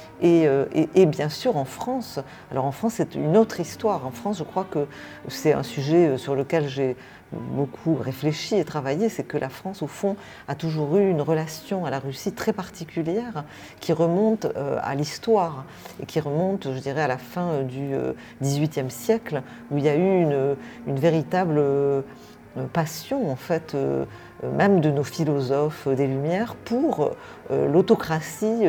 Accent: French